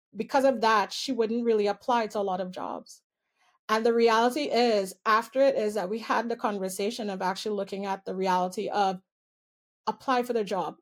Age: 30-49